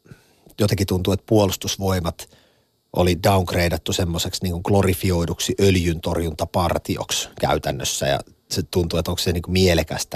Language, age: Finnish, 30-49